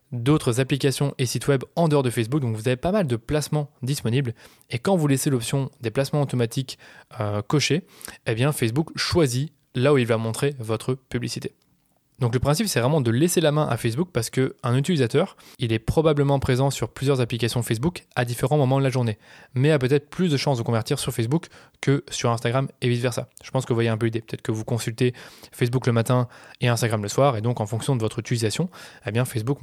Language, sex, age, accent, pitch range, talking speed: French, male, 20-39, French, 120-145 Hz, 220 wpm